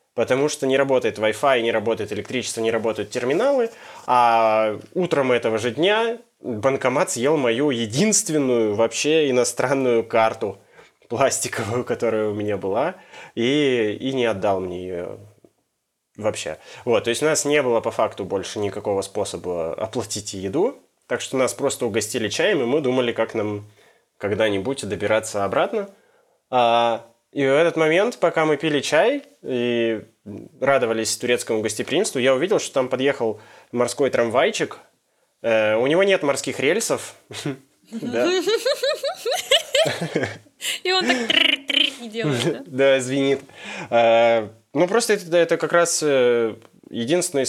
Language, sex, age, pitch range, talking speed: Russian, male, 20-39, 115-160 Hz, 130 wpm